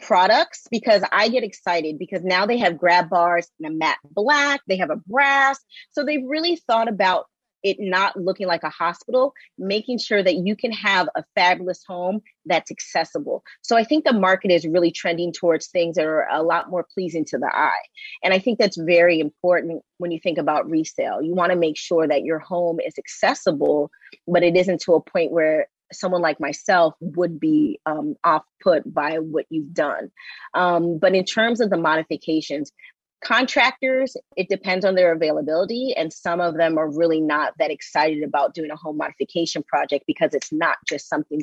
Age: 30-49